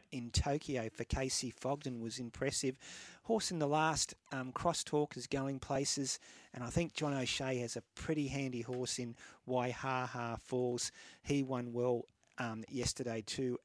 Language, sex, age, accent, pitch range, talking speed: English, male, 40-59, Australian, 125-150 Hz, 160 wpm